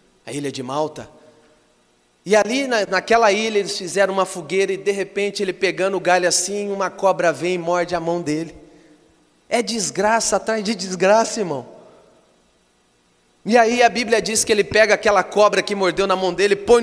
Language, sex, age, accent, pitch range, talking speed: Portuguese, male, 30-49, Brazilian, 150-250 Hz, 180 wpm